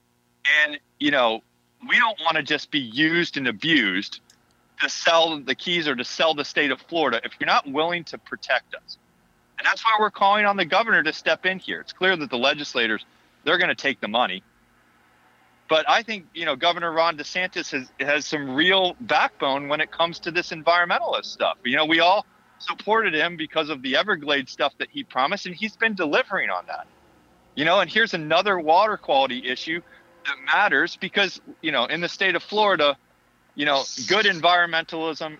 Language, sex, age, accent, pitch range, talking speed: English, male, 40-59, American, 130-185 Hz, 195 wpm